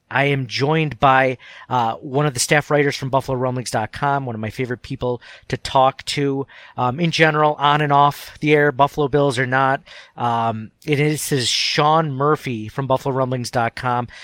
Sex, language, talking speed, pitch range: male, English, 165 wpm, 125-145 Hz